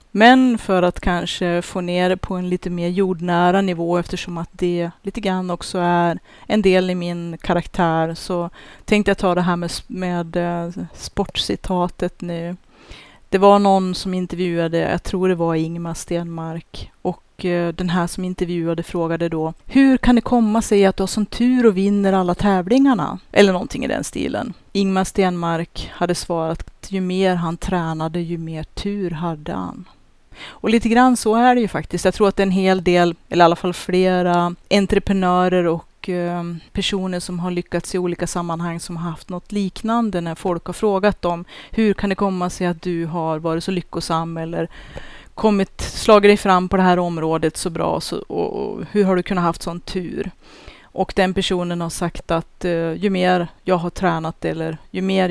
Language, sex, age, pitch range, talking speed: Swedish, female, 30-49, 170-195 Hz, 185 wpm